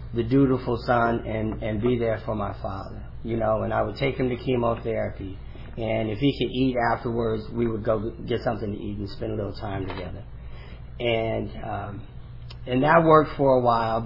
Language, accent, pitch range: English, American, 105-120 Hz